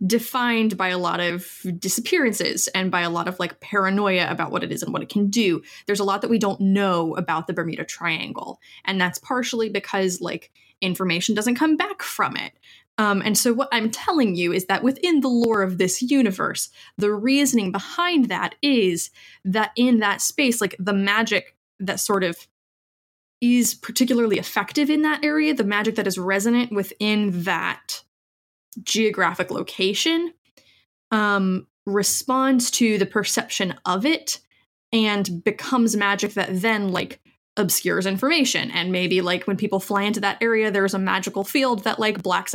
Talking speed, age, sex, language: 170 wpm, 20-39, female, English